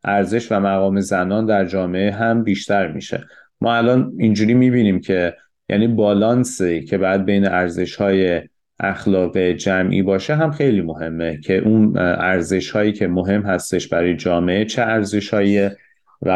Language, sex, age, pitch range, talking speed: Persian, male, 30-49, 90-100 Hz, 145 wpm